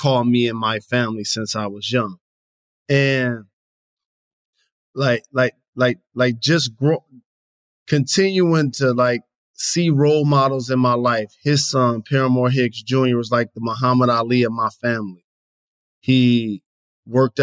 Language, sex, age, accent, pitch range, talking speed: English, male, 20-39, American, 115-135 Hz, 140 wpm